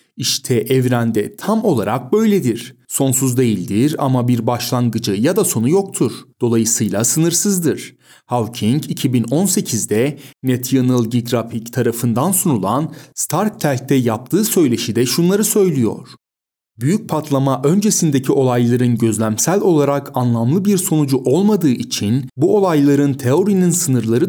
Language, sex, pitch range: Turkish, male, 120-170 Hz